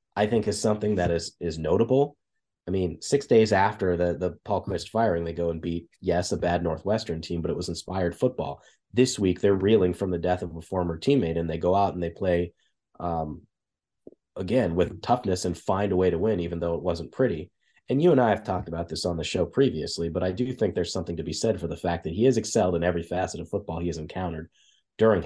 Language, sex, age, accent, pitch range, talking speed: English, male, 30-49, American, 85-110 Hz, 240 wpm